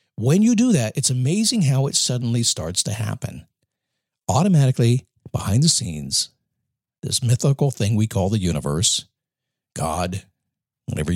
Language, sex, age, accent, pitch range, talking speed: English, male, 50-69, American, 115-155 Hz, 135 wpm